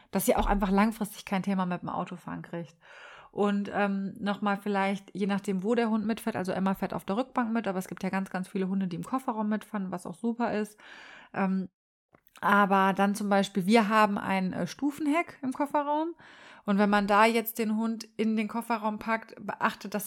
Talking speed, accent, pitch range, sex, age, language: 205 wpm, German, 195-225 Hz, female, 30-49, German